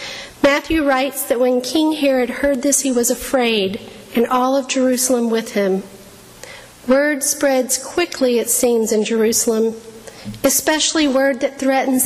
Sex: female